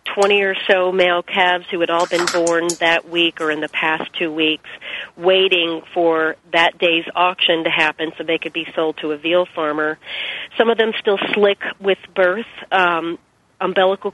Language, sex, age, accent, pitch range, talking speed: English, female, 40-59, American, 165-195 Hz, 185 wpm